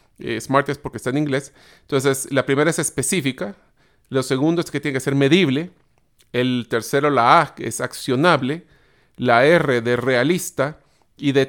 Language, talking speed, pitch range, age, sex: Spanish, 170 wpm, 130-170 Hz, 40-59, male